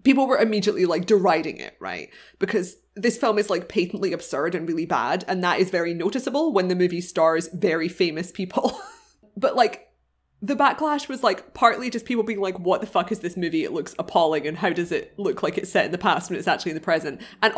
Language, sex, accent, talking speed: English, female, British, 230 wpm